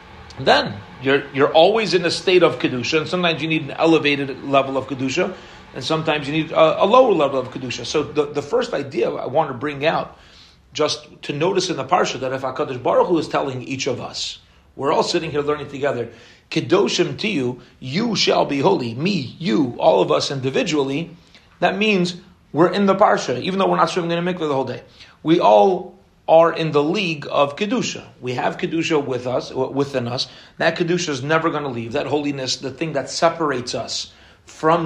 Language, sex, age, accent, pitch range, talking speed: English, male, 40-59, American, 135-165 Hz, 205 wpm